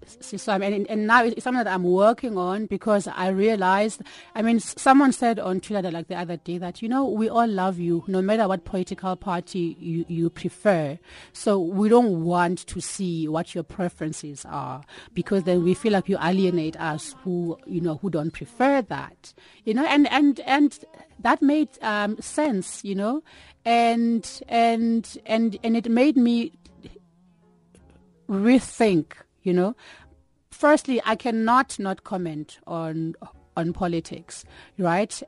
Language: English